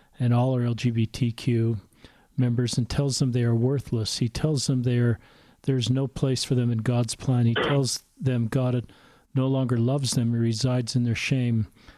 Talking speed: 175 wpm